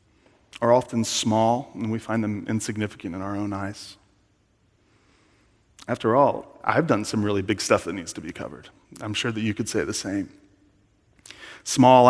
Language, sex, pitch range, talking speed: English, male, 105-115 Hz, 170 wpm